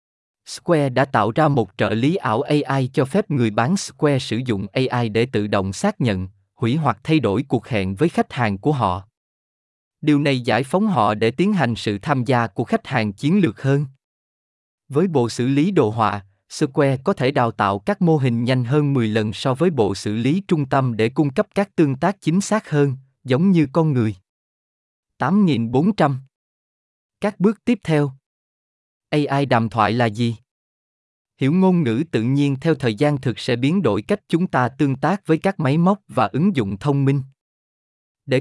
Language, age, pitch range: Vietnamese, 20-39, 115-155 Hz